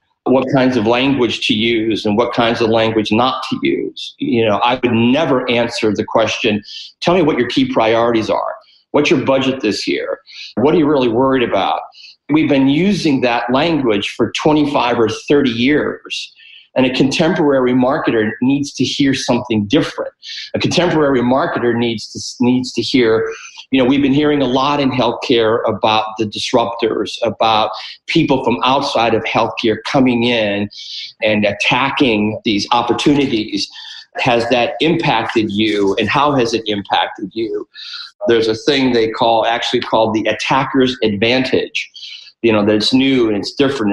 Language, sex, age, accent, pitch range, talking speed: English, male, 40-59, American, 110-145 Hz, 160 wpm